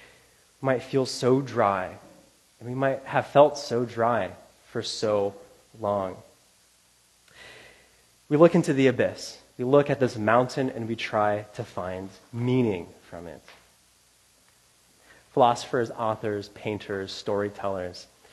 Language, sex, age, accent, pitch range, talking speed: English, male, 20-39, American, 110-140 Hz, 120 wpm